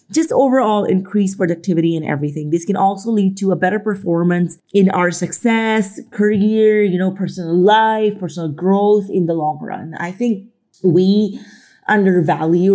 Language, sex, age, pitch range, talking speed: English, female, 30-49, 165-195 Hz, 150 wpm